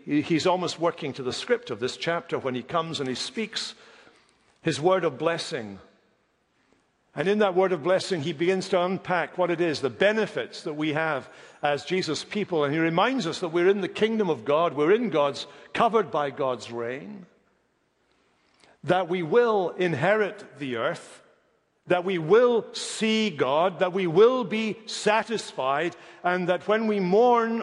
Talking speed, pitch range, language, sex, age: 170 wpm, 150-210 Hz, English, male, 60-79